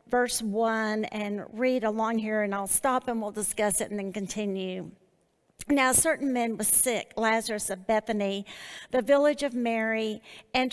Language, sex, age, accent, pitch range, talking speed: English, female, 50-69, American, 215-275 Hz, 160 wpm